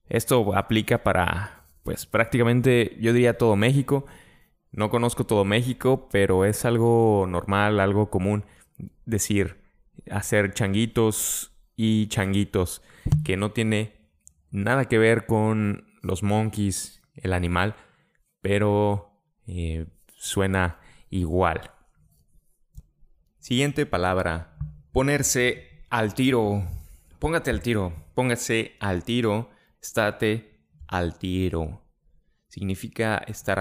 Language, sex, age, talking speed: English, male, 20-39, 100 wpm